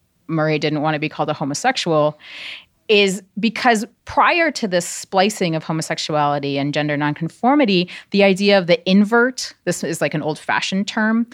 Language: English